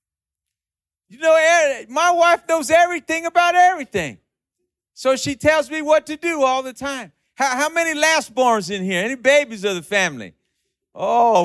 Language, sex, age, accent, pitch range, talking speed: English, male, 40-59, American, 175-270 Hz, 160 wpm